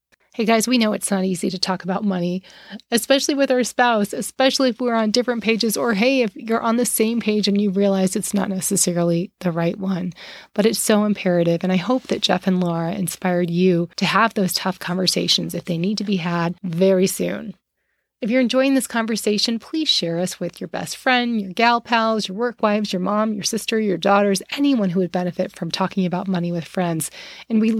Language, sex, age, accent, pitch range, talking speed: English, female, 30-49, American, 185-225 Hz, 215 wpm